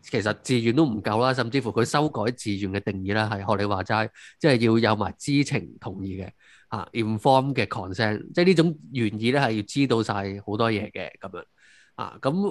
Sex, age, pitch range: male, 20-39, 105-140 Hz